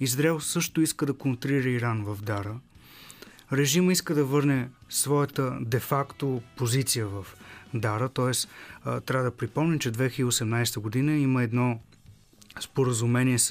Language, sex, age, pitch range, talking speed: Bulgarian, male, 30-49, 115-145 Hz, 120 wpm